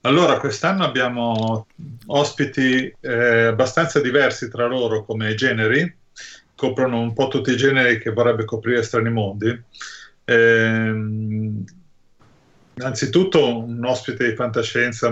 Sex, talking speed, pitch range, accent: male, 110 wpm, 105-120 Hz, native